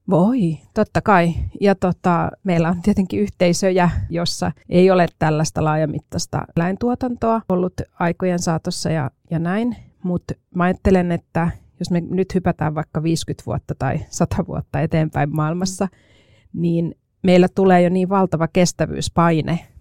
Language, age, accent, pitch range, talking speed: Finnish, 30-49, native, 150-180 Hz, 130 wpm